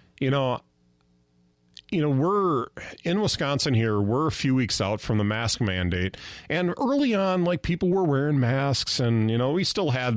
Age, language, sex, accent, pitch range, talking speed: 40-59, English, male, American, 95-145 Hz, 185 wpm